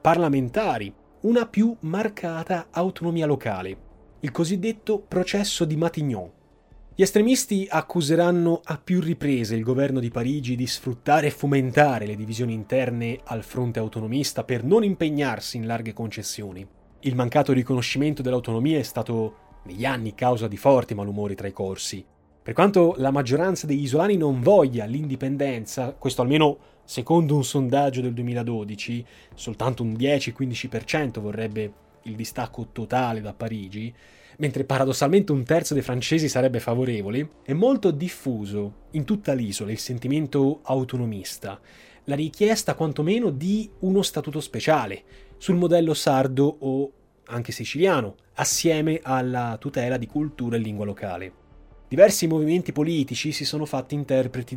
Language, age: Italian, 30-49